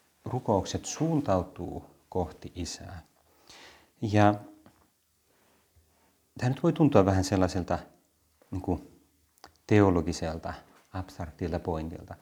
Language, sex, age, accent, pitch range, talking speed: Finnish, male, 30-49, native, 85-105 Hz, 80 wpm